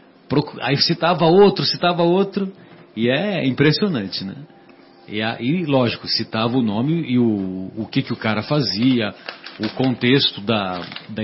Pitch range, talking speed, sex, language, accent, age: 100-130 Hz, 145 wpm, male, Portuguese, Brazilian, 40-59